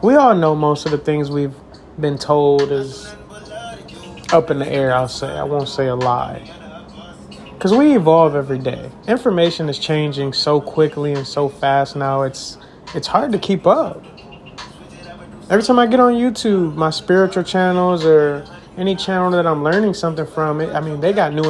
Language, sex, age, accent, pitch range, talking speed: English, male, 30-49, American, 145-190 Hz, 180 wpm